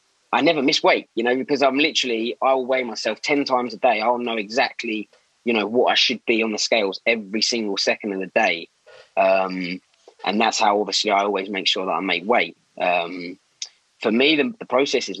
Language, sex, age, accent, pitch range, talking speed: English, male, 20-39, British, 110-145 Hz, 215 wpm